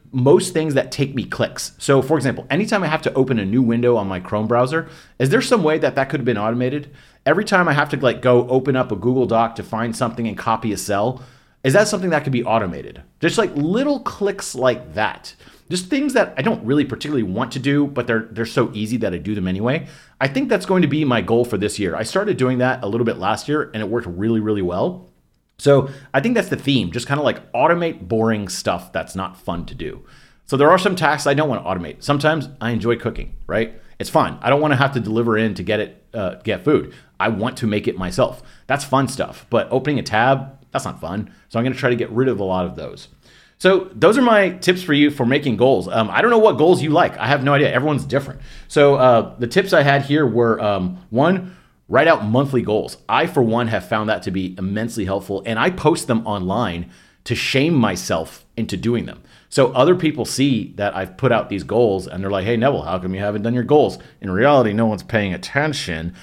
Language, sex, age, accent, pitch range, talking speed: English, male, 30-49, American, 110-145 Hz, 250 wpm